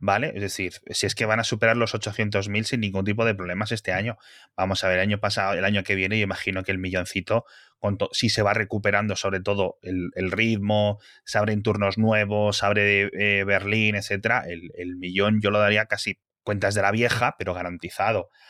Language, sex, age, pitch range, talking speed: Spanish, male, 20-39, 100-130 Hz, 210 wpm